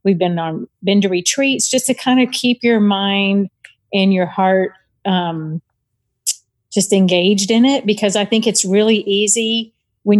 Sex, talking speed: female, 165 wpm